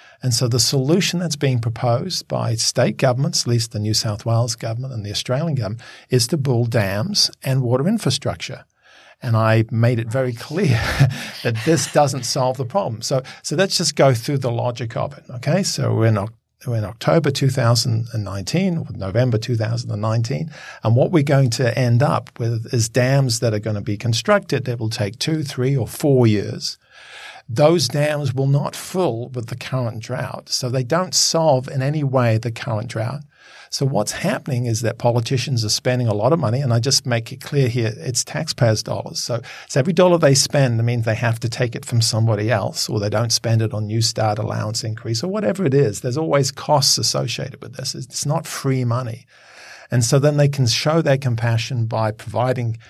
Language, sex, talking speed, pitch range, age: English, male, 195 wpm, 115-140 Hz, 50-69